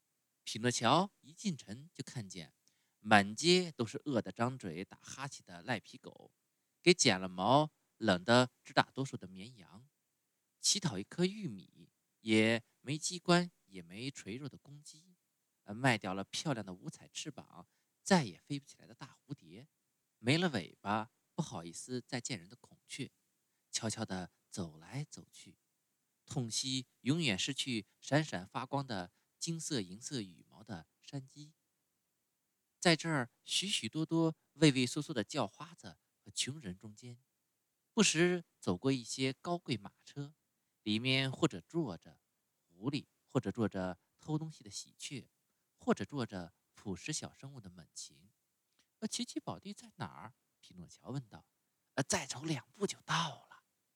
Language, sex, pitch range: Chinese, male, 110-155 Hz